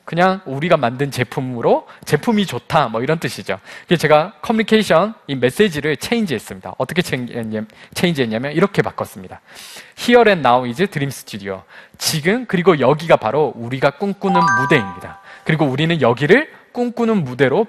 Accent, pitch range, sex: native, 125-200 Hz, male